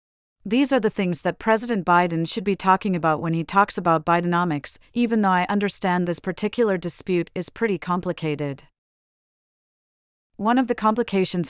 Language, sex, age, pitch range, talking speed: English, female, 40-59, 165-195 Hz, 155 wpm